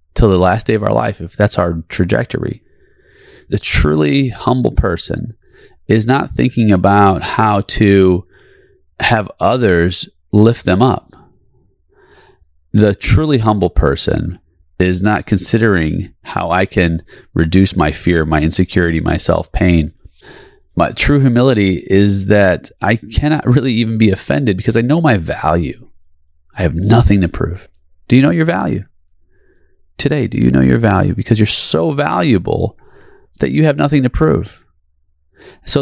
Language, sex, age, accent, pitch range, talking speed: English, male, 30-49, American, 85-115 Hz, 145 wpm